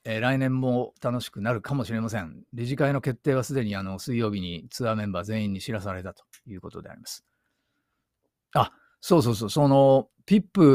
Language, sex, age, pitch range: Japanese, male, 50-69, 110-155 Hz